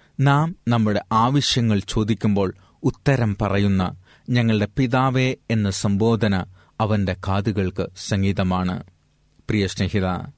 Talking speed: 75 wpm